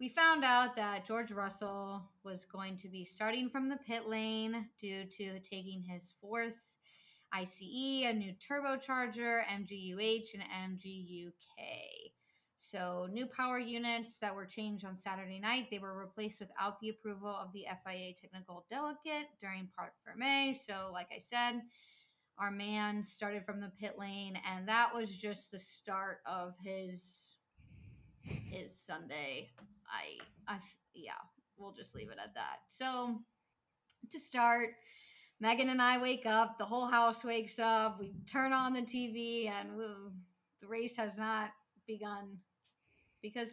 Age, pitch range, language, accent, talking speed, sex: 20-39, 195-240 Hz, English, American, 145 wpm, female